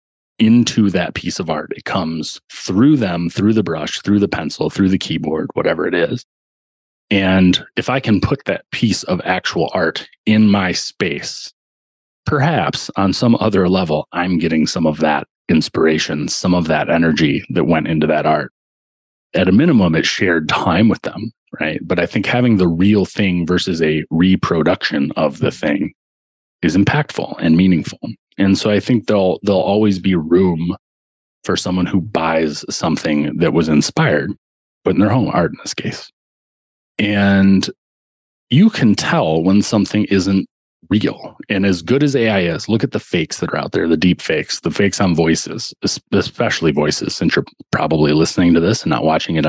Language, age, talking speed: English, 30-49, 175 wpm